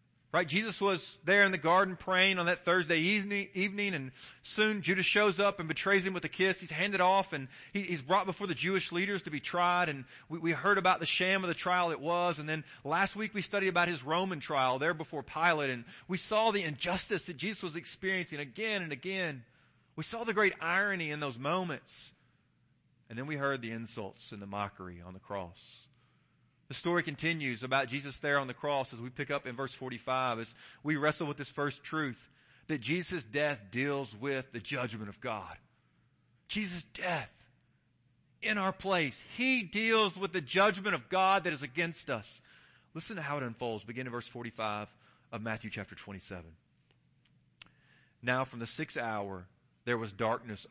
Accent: American